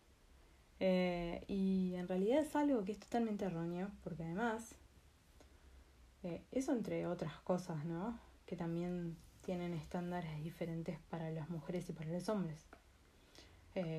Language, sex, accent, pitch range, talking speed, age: Spanish, female, Argentinian, 155-195 Hz, 135 wpm, 20-39